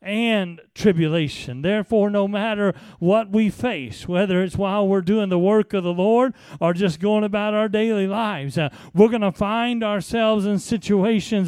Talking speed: 175 wpm